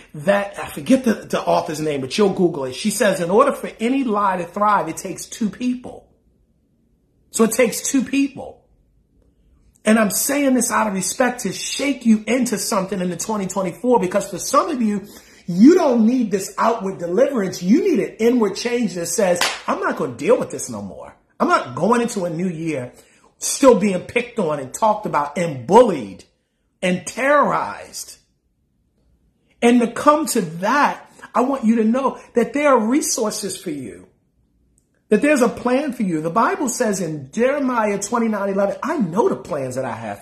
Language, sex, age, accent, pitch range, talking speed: English, male, 40-59, American, 185-250 Hz, 190 wpm